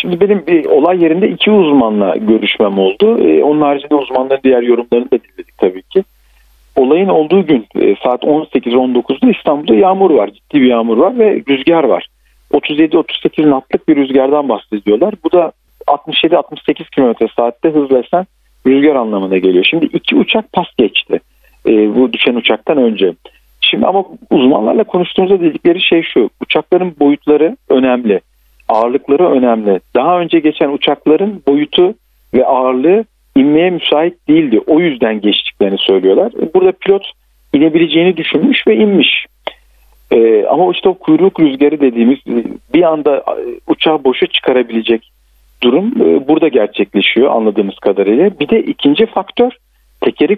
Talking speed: 135 wpm